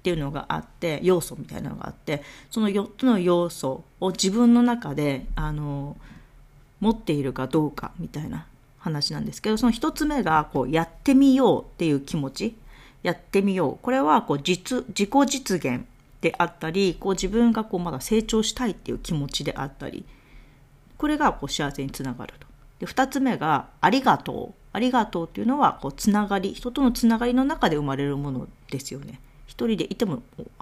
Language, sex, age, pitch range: Japanese, female, 40-59, 145-235 Hz